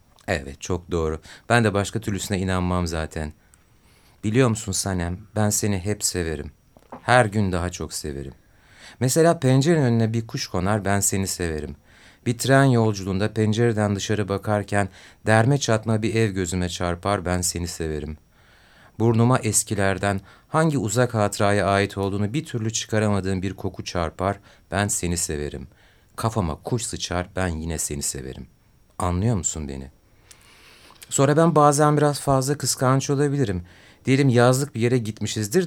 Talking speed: 140 wpm